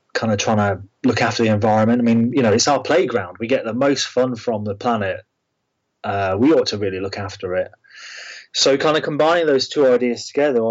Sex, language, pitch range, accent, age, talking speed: male, English, 105-120 Hz, British, 30-49, 220 wpm